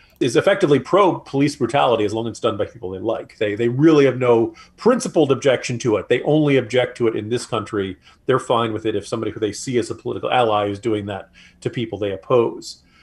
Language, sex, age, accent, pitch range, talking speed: English, male, 40-59, American, 110-140 Hz, 235 wpm